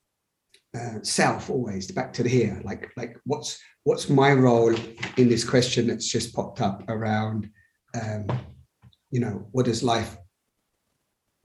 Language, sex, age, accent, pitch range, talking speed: English, male, 30-49, British, 115-130 Hz, 140 wpm